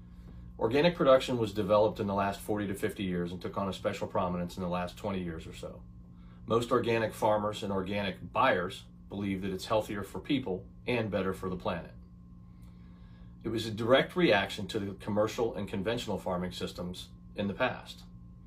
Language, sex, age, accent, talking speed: English, male, 40-59, American, 180 wpm